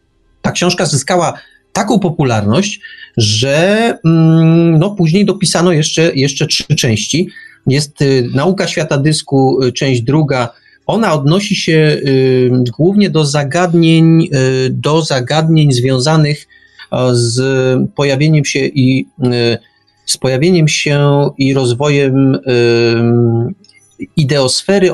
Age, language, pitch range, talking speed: 40-59, Polish, 130-170 Hz, 100 wpm